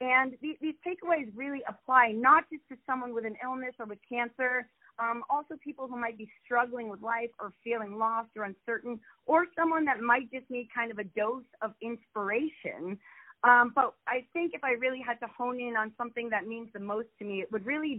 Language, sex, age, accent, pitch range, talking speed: English, female, 30-49, American, 220-265 Hz, 210 wpm